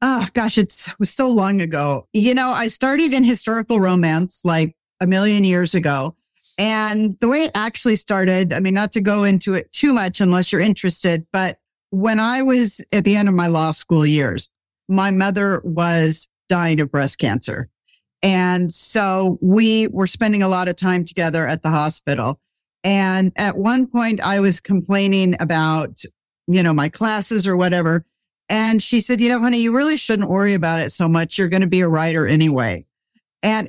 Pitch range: 170-215 Hz